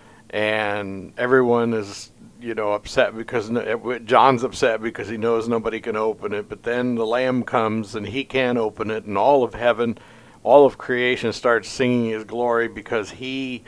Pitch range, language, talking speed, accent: 110-130 Hz, English, 170 wpm, American